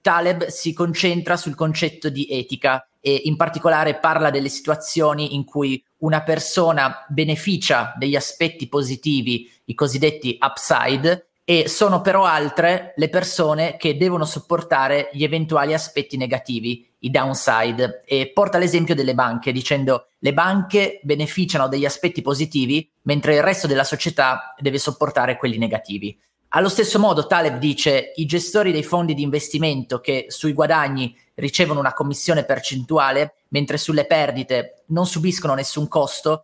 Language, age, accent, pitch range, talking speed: Italian, 30-49, native, 135-160 Hz, 140 wpm